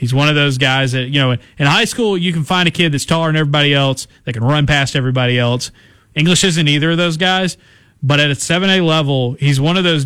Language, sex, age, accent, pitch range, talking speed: English, male, 30-49, American, 125-165 Hz, 250 wpm